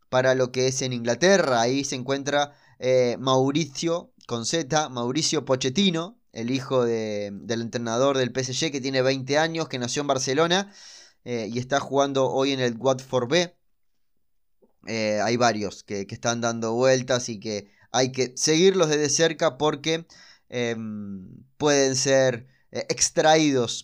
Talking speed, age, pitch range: 150 wpm, 20-39, 125-155 Hz